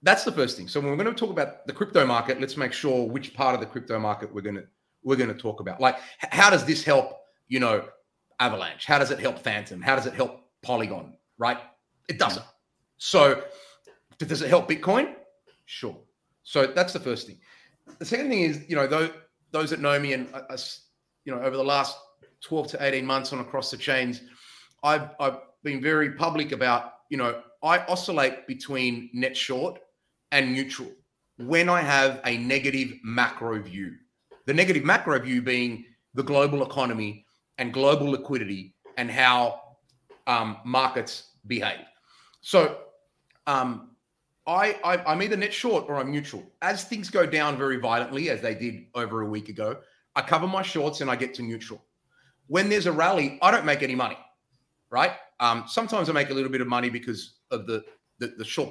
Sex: male